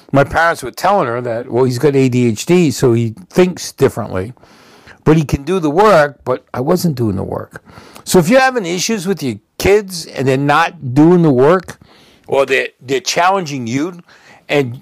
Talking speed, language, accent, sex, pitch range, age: 185 wpm, English, American, male, 120-175 Hz, 60-79